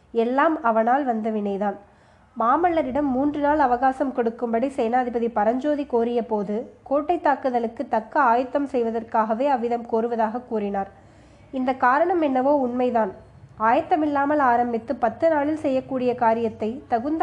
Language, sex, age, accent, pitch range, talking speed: Tamil, female, 20-39, native, 230-275 Hz, 105 wpm